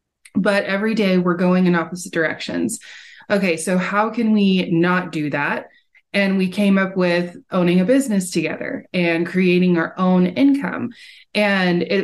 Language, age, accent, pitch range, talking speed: English, 20-39, American, 175-205 Hz, 160 wpm